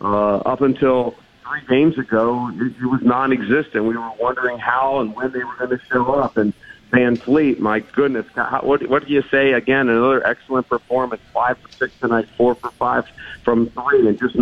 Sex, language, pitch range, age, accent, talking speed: male, English, 115-130 Hz, 50-69, American, 195 wpm